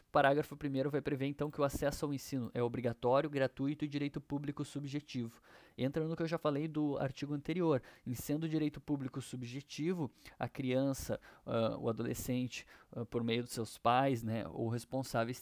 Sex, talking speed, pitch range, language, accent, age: male, 175 wpm, 120-145 Hz, Portuguese, Brazilian, 20-39